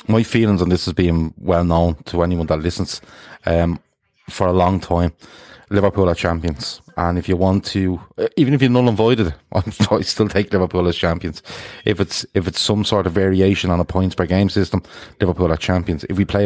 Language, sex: English, male